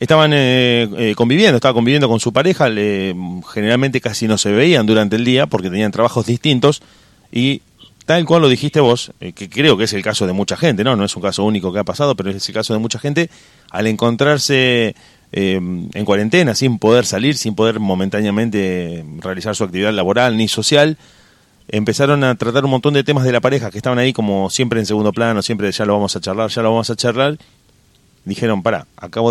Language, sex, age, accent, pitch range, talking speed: Spanish, male, 30-49, Argentinian, 100-130 Hz, 210 wpm